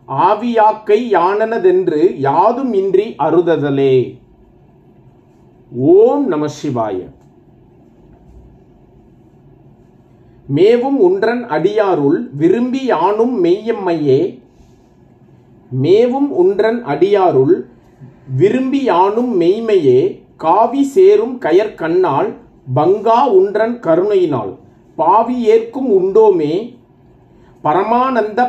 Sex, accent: male, native